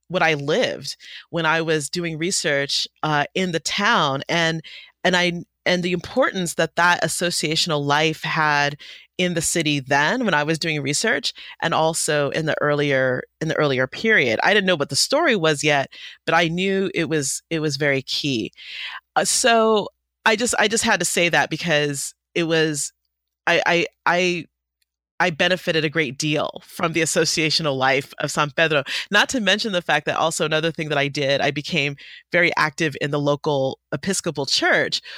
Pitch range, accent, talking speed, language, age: 145-180 Hz, American, 185 wpm, English, 30-49